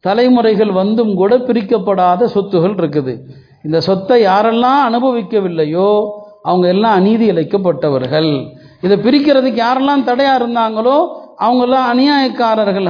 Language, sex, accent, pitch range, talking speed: Tamil, male, native, 195-255 Hz, 100 wpm